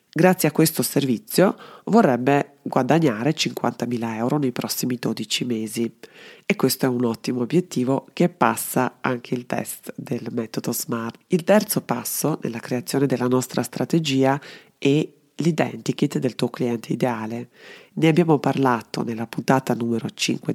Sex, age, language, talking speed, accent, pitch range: female, 30-49, Italian, 135 wpm, native, 125-150 Hz